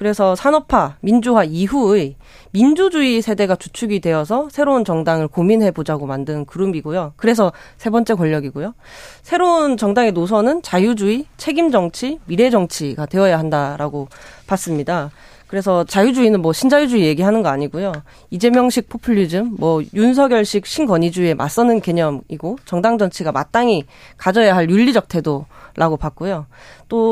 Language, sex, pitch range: Korean, female, 165-235 Hz